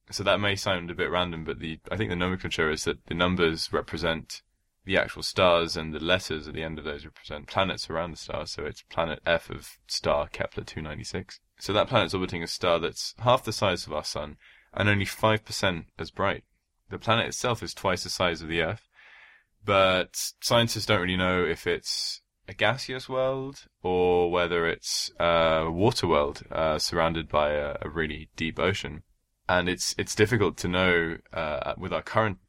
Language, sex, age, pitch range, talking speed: English, male, 20-39, 80-100 Hz, 190 wpm